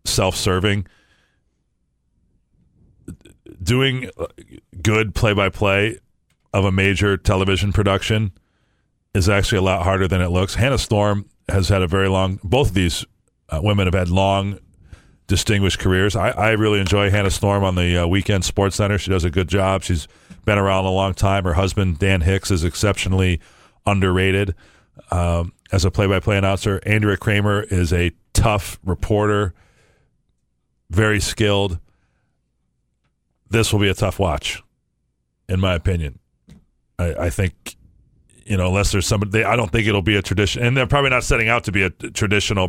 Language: English